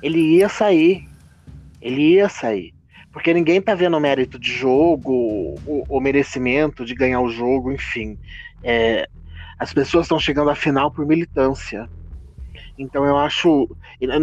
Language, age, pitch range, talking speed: Portuguese, 30-49, 130-185 Hz, 150 wpm